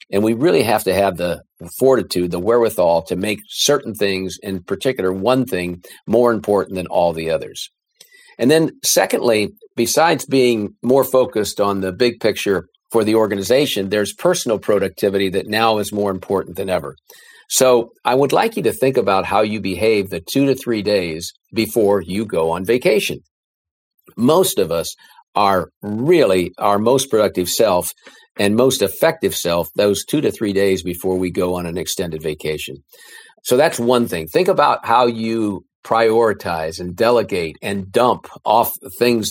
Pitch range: 95-120 Hz